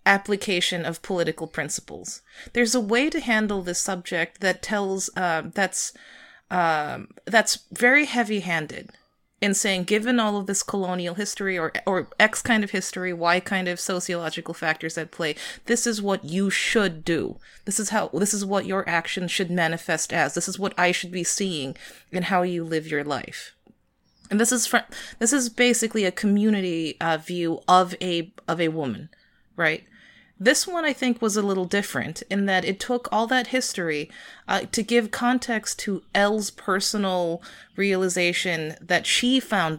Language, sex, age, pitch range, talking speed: English, female, 30-49, 170-210 Hz, 170 wpm